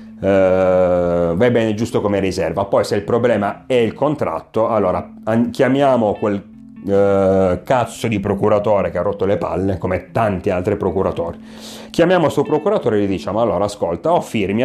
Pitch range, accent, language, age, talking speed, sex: 100-135 Hz, native, Italian, 30-49, 170 wpm, male